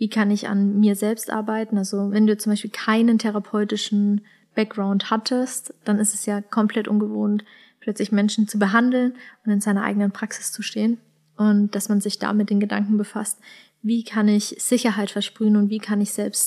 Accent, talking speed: German, 190 wpm